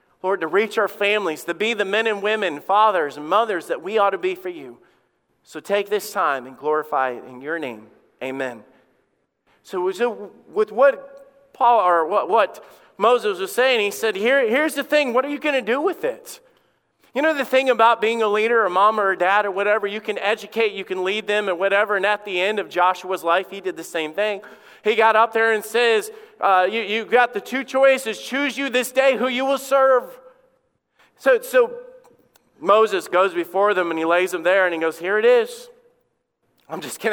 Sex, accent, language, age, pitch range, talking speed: male, American, English, 40-59, 185-270 Hz, 215 wpm